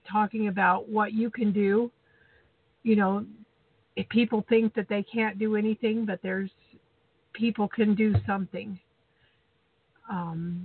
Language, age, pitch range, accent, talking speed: English, 50-69, 195-225 Hz, American, 130 wpm